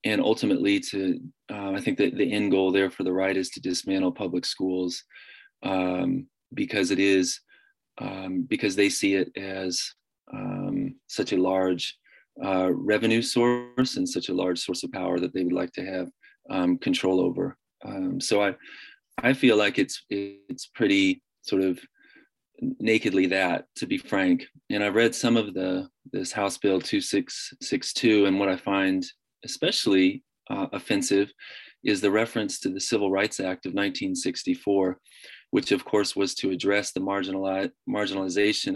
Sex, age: male, 30-49